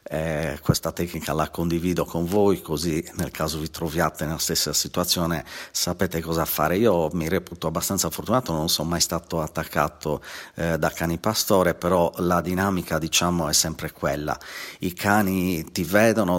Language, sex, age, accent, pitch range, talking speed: Italian, male, 50-69, native, 85-95 Hz, 155 wpm